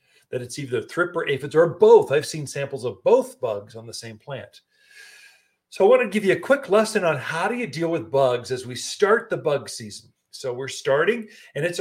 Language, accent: English, American